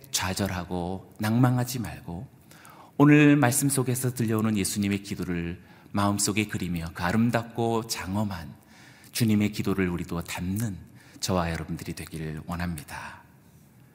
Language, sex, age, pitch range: Korean, male, 40-59, 95-135 Hz